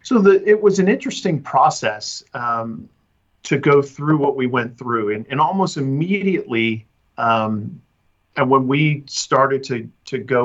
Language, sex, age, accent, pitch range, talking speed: English, male, 50-69, American, 115-150 Hz, 155 wpm